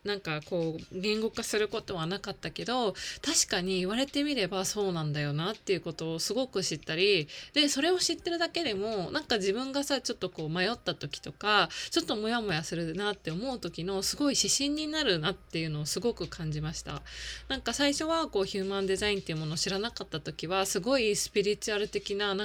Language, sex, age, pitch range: Japanese, female, 20-39, 170-230 Hz